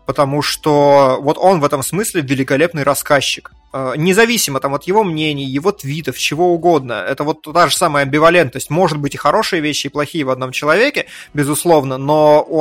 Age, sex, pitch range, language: 20-39, male, 135-165 Hz, Russian